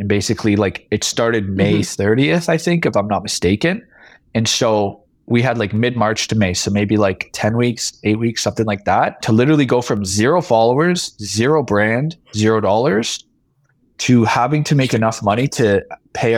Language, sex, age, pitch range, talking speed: English, male, 20-39, 105-125 Hz, 180 wpm